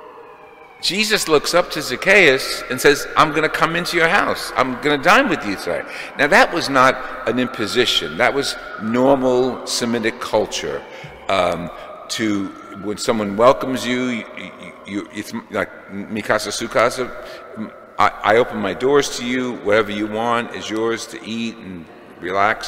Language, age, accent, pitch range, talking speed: English, 50-69, American, 105-150 Hz, 155 wpm